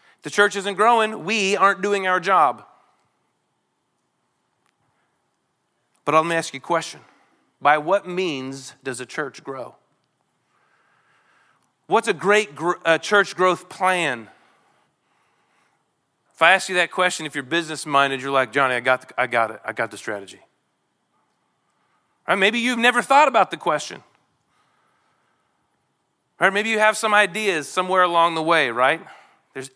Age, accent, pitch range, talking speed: 40-59, American, 155-215 Hz, 150 wpm